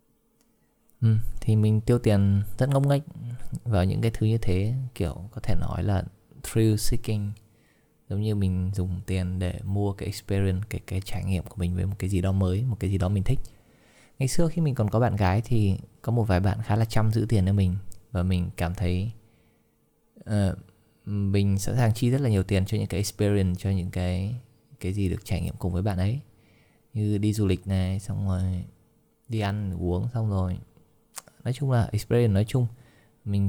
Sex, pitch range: male, 95-110 Hz